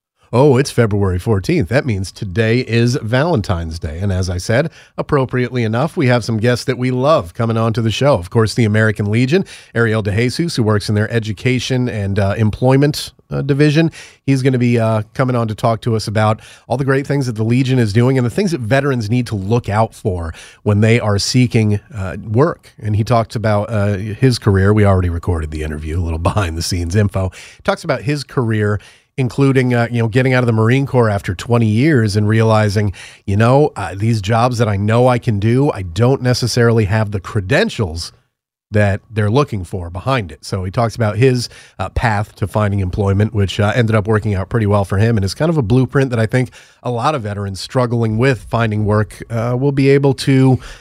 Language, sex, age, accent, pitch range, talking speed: English, male, 30-49, American, 105-125 Hz, 215 wpm